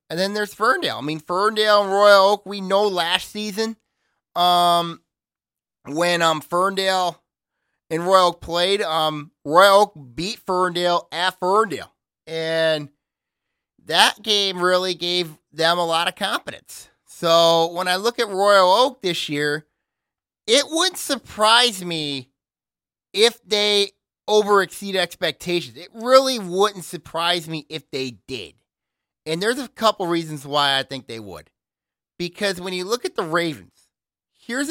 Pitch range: 160-205 Hz